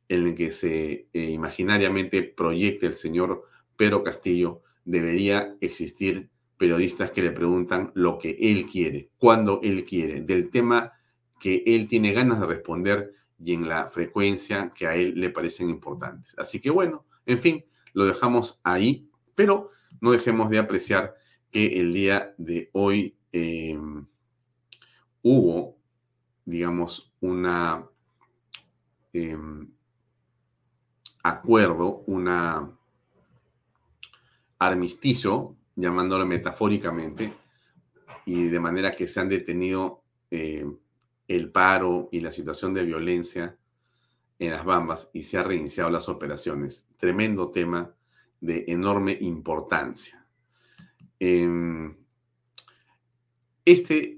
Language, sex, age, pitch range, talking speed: Spanish, male, 40-59, 85-120 Hz, 110 wpm